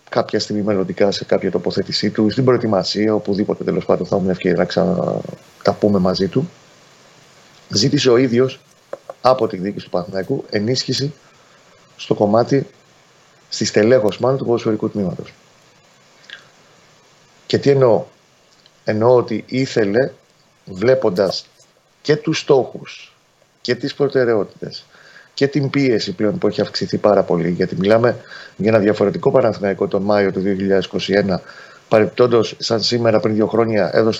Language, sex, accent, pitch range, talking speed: Greek, male, native, 100-130 Hz, 135 wpm